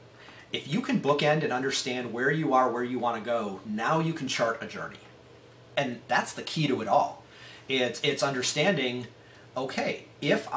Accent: American